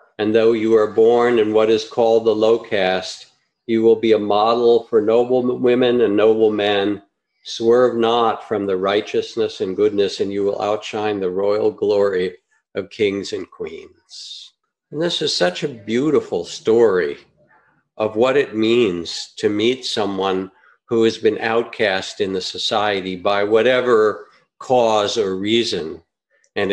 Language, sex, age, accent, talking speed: English, male, 50-69, American, 155 wpm